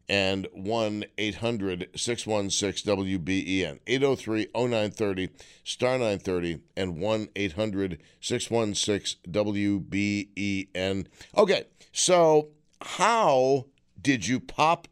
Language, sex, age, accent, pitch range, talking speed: English, male, 60-79, American, 95-125 Hz, 50 wpm